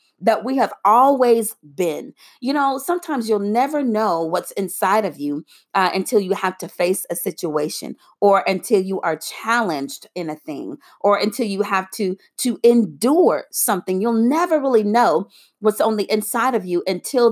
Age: 40-59